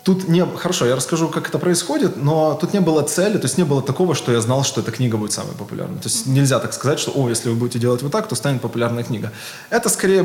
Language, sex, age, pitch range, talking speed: Russian, male, 20-39, 120-160 Hz, 270 wpm